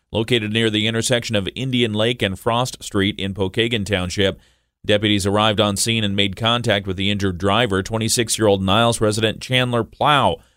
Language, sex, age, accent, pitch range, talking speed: English, male, 40-59, American, 95-115 Hz, 165 wpm